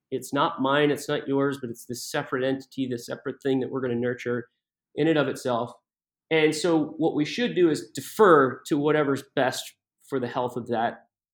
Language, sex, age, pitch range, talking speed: English, male, 30-49, 125-150 Hz, 205 wpm